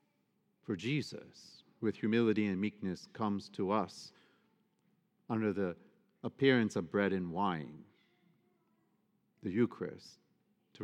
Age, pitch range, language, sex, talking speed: 50-69, 95-160 Hz, English, male, 105 wpm